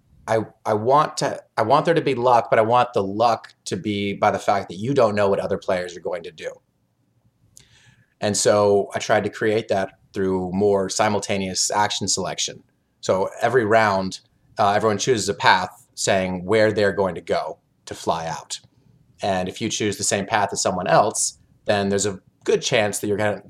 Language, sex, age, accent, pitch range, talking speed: English, male, 30-49, American, 100-125 Hz, 190 wpm